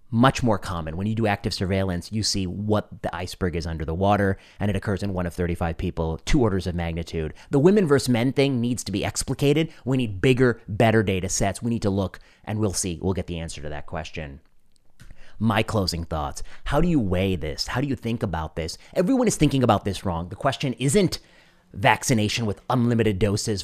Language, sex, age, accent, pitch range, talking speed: English, male, 30-49, American, 95-120 Hz, 215 wpm